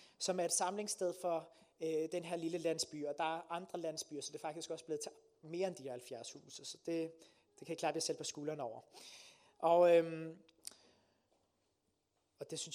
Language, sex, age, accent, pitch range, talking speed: Danish, male, 30-49, native, 160-205 Hz, 205 wpm